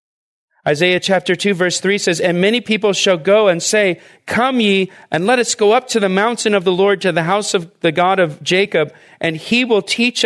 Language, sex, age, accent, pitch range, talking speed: English, male, 40-59, American, 155-210 Hz, 220 wpm